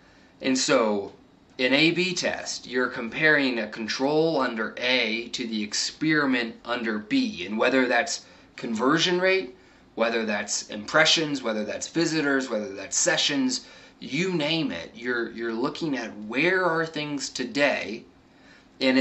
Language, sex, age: English, male, 20-39